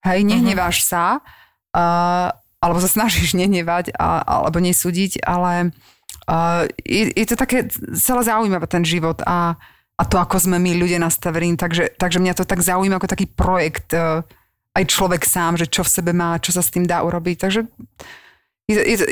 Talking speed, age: 180 wpm, 30-49